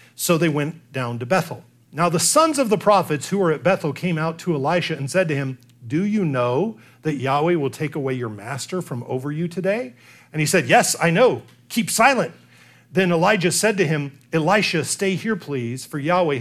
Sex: male